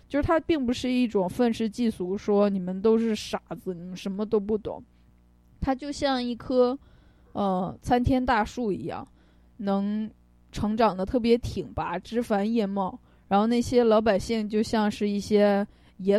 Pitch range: 185-230 Hz